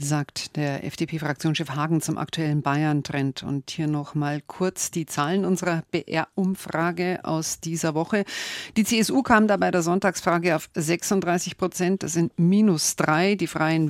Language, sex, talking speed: German, female, 145 wpm